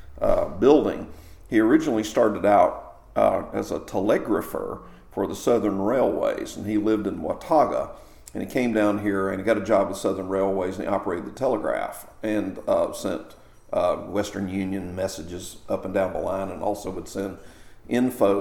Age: 50-69